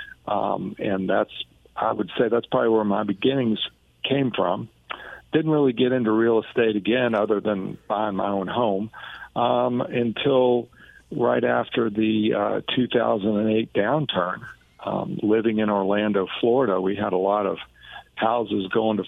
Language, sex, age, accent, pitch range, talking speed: English, male, 50-69, American, 100-120 Hz, 150 wpm